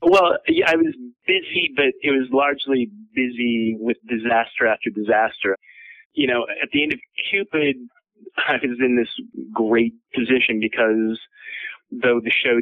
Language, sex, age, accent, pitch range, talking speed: English, male, 30-49, American, 110-130 Hz, 145 wpm